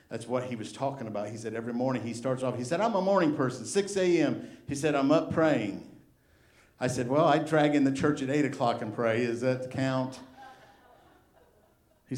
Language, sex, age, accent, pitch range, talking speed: English, male, 50-69, American, 130-170 Hz, 215 wpm